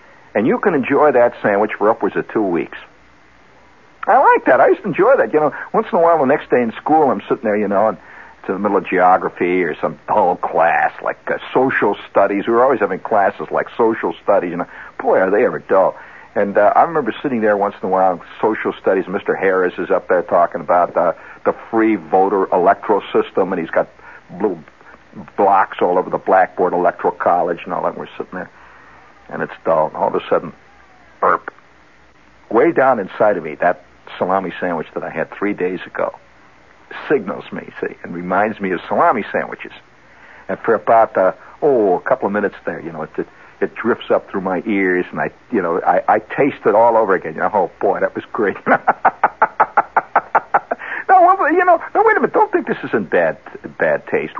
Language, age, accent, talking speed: English, 60-79, American, 210 wpm